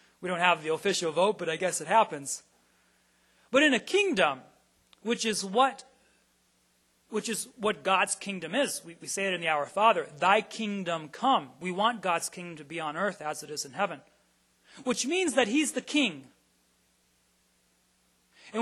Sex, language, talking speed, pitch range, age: male, English, 175 wpm, 150-205 Hz, 30-49